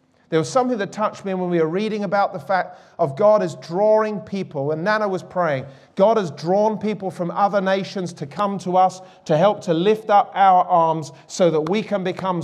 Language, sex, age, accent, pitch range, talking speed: English, male, 40-59, British, 145-190 Hz, 215 wpm